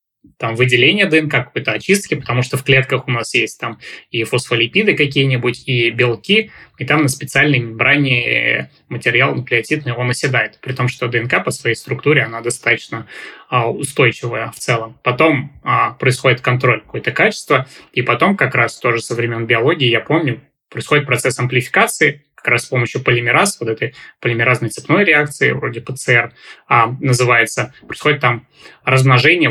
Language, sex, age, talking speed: Russian, male, 20-39, 150 wpm